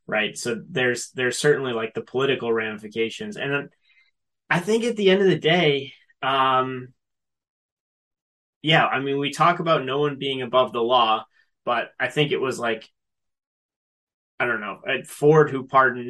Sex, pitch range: male, 120-145 Hz